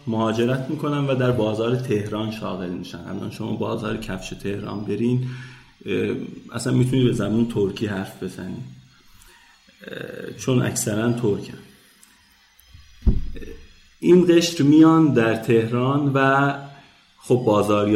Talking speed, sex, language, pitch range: 105 wpm, male, Persian, 110-135 Hz